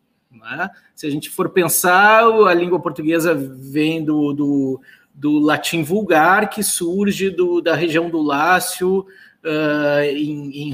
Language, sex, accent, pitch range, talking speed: Portuguese, male, Brazilian, 150-200 Hz, 125 wpm